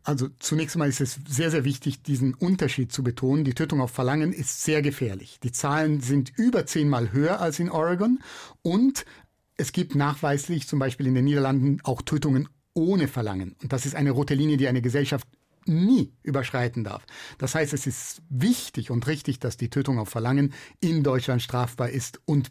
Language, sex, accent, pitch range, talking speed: German, male, German, 130-170 Hz, 185 wpm